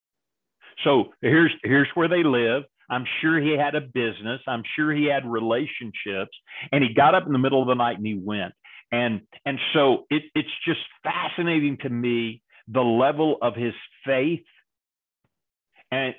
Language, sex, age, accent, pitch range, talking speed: English, male, 50-69, American, 125-155 Hz, 165 wpm